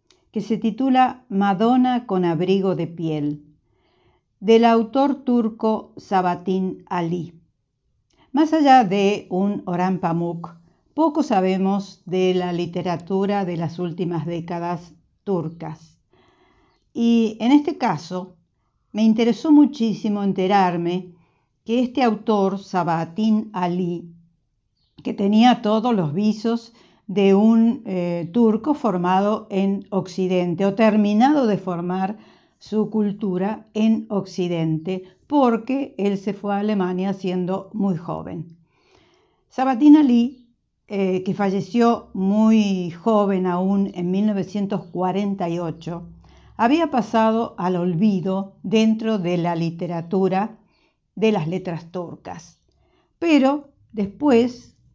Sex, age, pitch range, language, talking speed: female, 50-69, 180-225 Hz, Spanish, 105 wpm